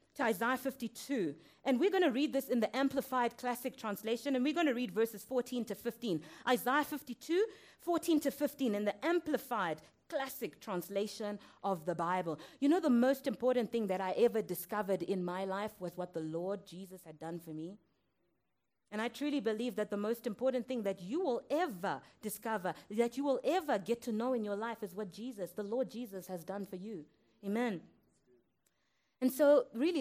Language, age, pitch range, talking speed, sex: English, 30-49, 190-260 Hz, 190 wpm, female